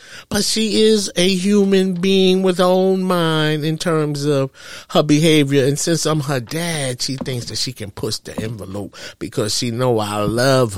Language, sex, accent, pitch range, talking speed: English, male, American, 125-180 Hz, 185 wpm